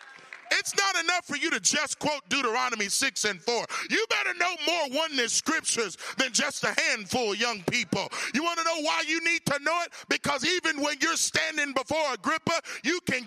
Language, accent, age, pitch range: English, American, 40-59, 215-315 Hz